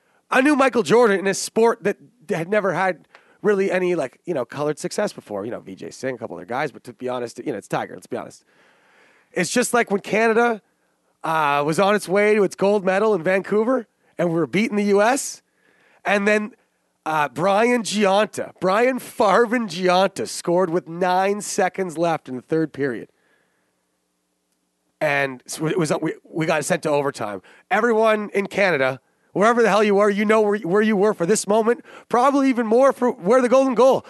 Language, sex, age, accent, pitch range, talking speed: English, male, 30-49, American, 165-220 Hz, 200 wpm